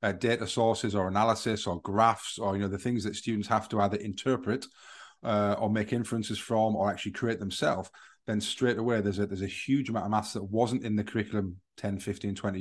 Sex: male